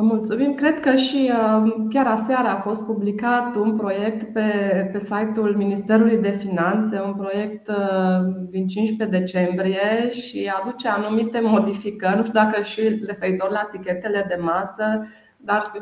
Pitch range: 190-230 Hz